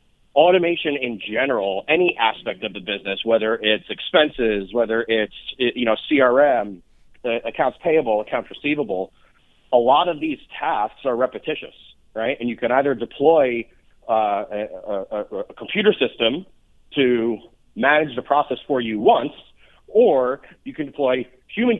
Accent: American